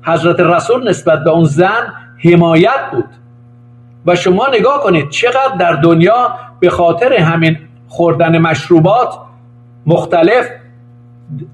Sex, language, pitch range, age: male, Persian, 125-195 Hz, 50-69